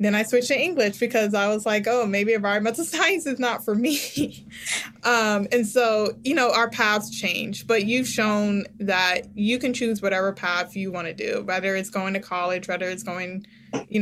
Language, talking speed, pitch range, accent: English, 200 wpm, 185-225 Hz, American